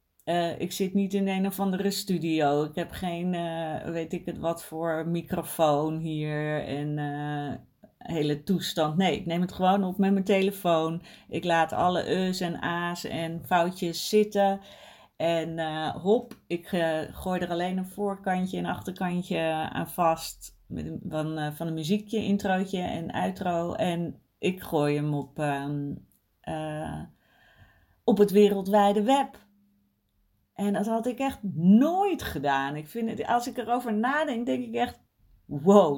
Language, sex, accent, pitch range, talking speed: Dutch, female, Dutch, 160-210 Hz, 150 wpm